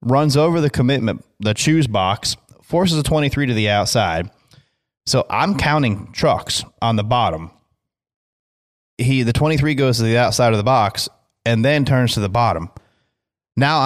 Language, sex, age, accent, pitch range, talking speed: English, male, 20-39, American, 105-130 Hz, 160 wpm